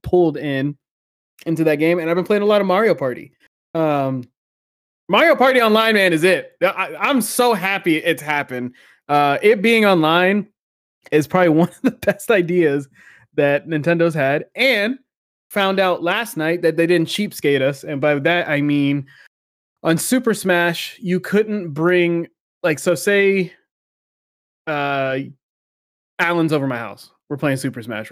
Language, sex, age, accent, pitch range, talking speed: English, male, 20-39, American, 135-175 Hz, 155 wpm